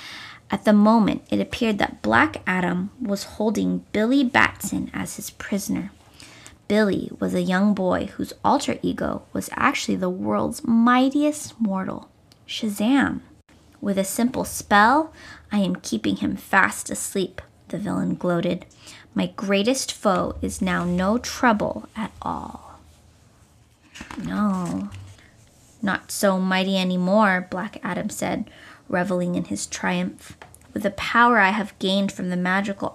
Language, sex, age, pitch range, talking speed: English, female, 20-39, 180-220 Hz, 135 wpm